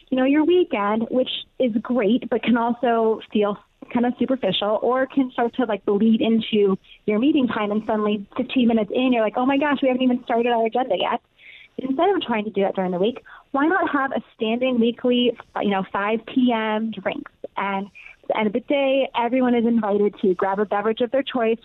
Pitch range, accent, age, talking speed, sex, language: 210-260 Hz, American, 30-49, 215 wpm, female, English